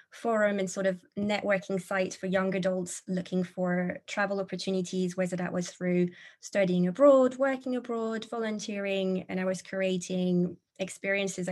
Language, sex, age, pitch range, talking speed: English, female, 20-39, 185-205 Hz, 140 wpm